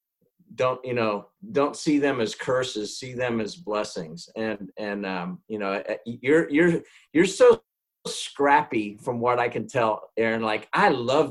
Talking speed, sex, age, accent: 165 wpm, male, 40-59, American